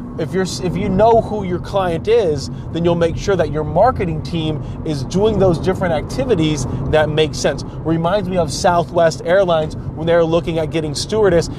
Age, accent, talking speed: 30-49, American, 190 wpm